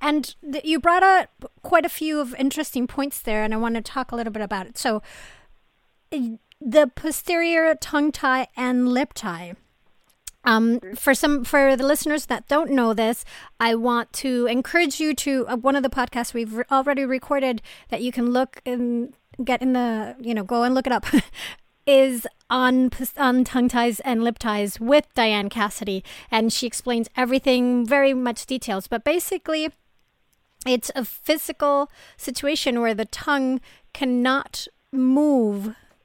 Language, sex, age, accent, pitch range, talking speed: English, female, 40-59, American, 230-275 Hz, 165 wpm